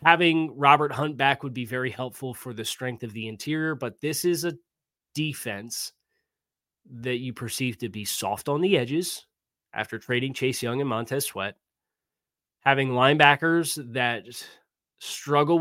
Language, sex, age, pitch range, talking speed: English, male, 20-39, 120-145 Hz, 150 wpm